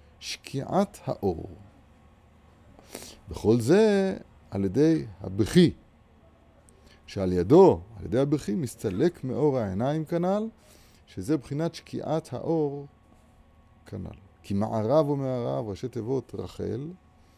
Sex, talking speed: male, 95 wpm